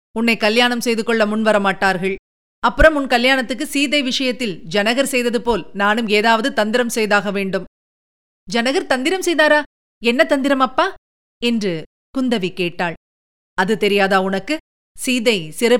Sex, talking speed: female, 120 wpm